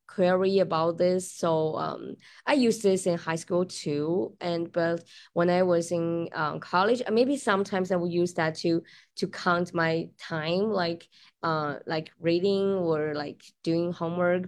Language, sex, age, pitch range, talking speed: English, female, 20-39, 165-195 Hz, 160 wpm